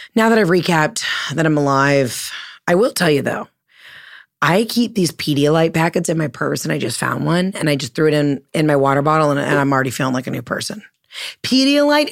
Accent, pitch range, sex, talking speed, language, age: American, 145-190 Hz, female, 225 wpm, English, 30-49